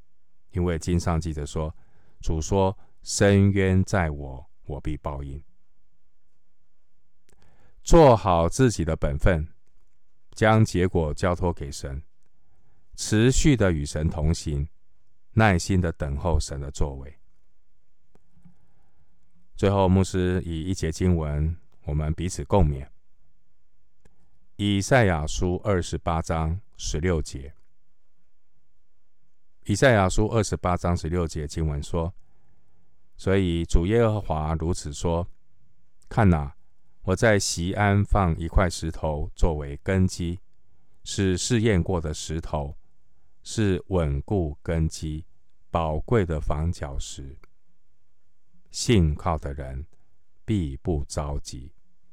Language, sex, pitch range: Chinese, male, 75-95 Hz